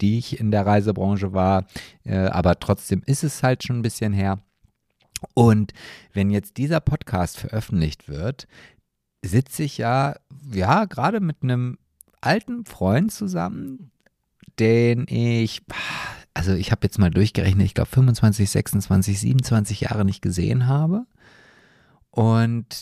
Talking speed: 130 wpm